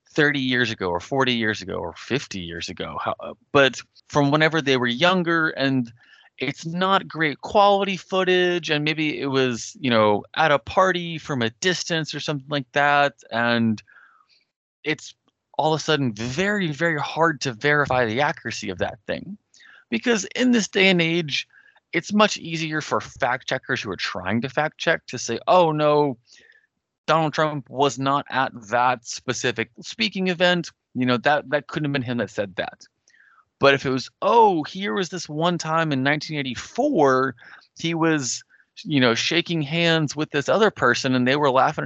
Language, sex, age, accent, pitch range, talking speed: English, male, 20-39, American, 120-165 Hz, 175 wpm